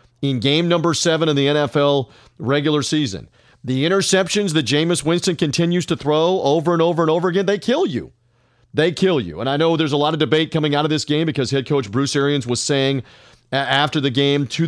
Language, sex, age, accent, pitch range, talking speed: English, male, 40-59, American, 130-165 Hz, 215 wpm